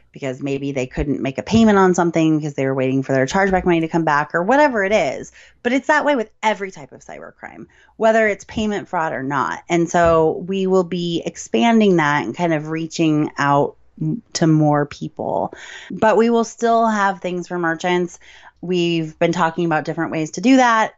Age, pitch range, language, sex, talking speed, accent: 30-49, 155-195 Hz, English, female, 205 wpm, American